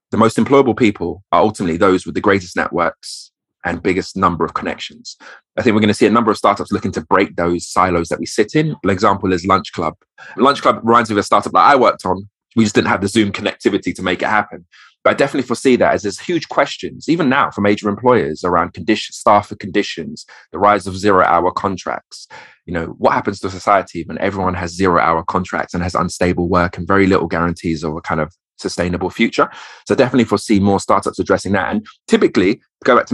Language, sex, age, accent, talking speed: English, male, 20-39, British, 225 wpm